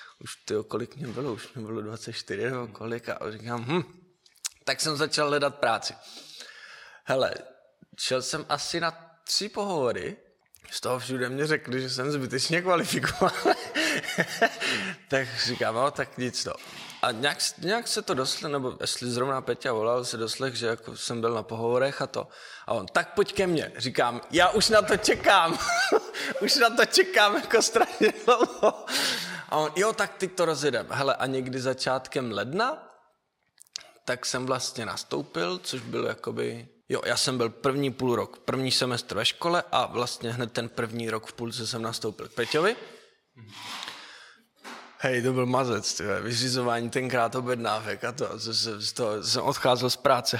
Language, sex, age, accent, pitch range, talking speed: Czech, male, 20-39, native, 120-155 Hz, 160 wpm